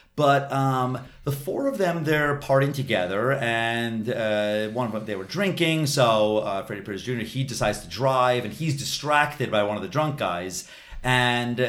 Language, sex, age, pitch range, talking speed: English, male, 30-49, 110-145 Hz, 185 wpm